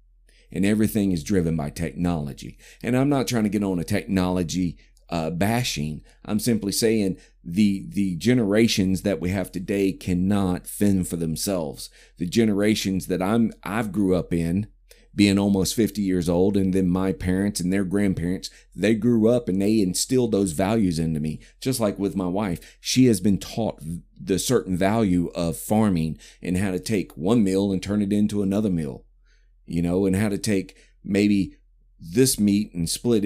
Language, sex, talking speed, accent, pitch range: English, male, 175 wpm, American, 90-105 Hz